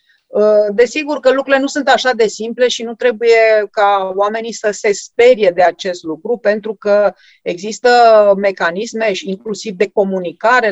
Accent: native